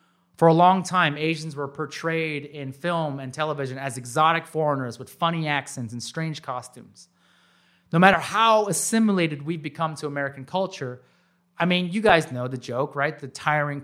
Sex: male